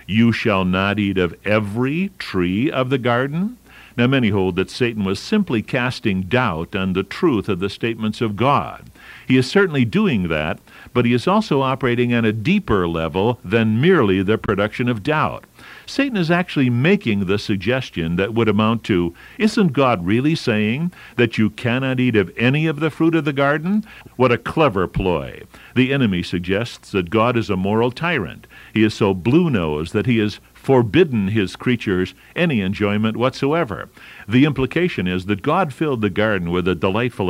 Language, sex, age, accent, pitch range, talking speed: English, male, 60-79, American, 105-140 Hz, 175 wpm